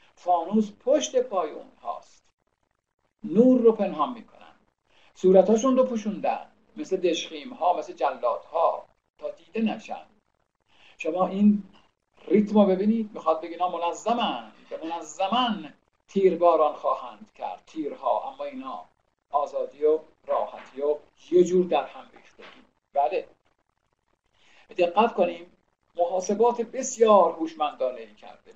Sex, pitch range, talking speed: male, 175-255 Hz, 110 wpm